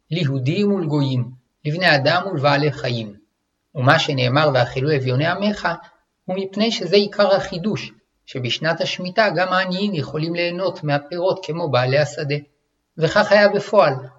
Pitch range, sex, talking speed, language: 140-185 Hz, male, 125 wpm, Hebrew